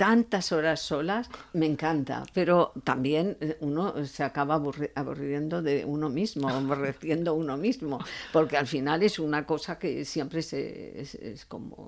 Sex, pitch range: female, 145-185 Hz